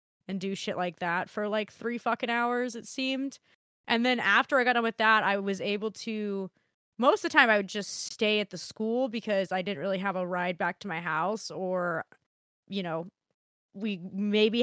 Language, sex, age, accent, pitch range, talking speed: English, female, 20-39, American, 185-215 Hz, 210 wpm